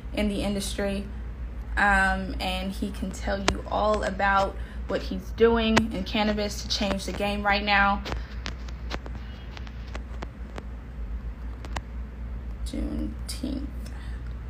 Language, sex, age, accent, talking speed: English, female, 20-39, American, 95 wpm